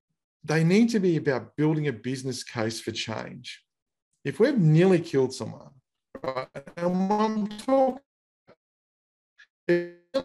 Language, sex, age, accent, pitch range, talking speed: English, male, 40-59, Australian, 115-150 Hz, 115 wpm